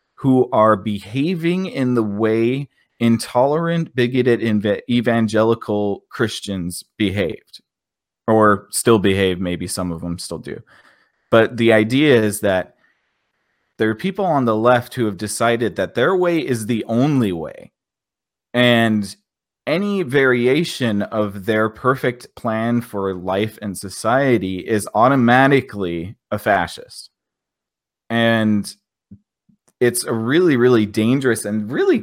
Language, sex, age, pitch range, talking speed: English, male, 30-49, 100-120 Hz, 120 wpm